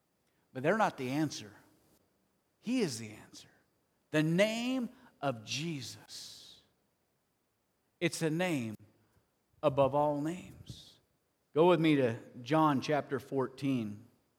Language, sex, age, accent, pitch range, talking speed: English, male, 50-69, American, 120-160 Hz, 110 wpm